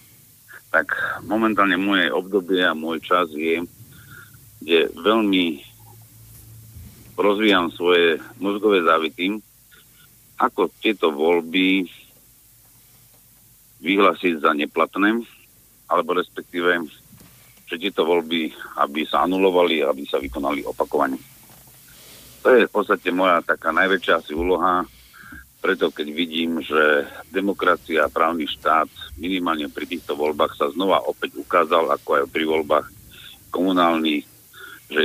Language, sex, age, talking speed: English, male, 50-69, 105 wpm